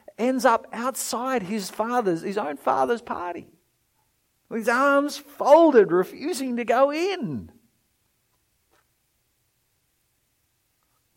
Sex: male